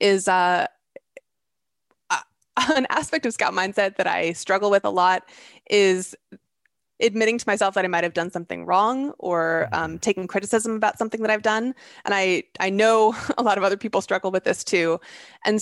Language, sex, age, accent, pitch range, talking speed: English, female, 20-39, American, 180-230 Hz, 175 wpm